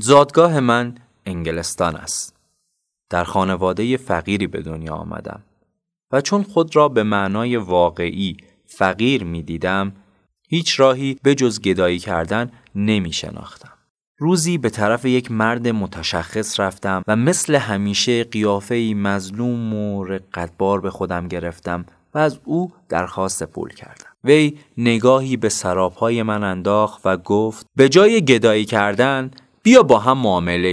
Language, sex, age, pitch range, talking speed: Persian, male, 30-49, 100-160 Hz, 130 wpm